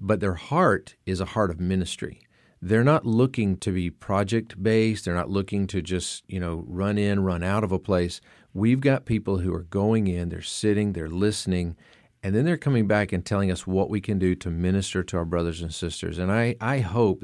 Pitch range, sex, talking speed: 90-110 Hz, male, 220 wpm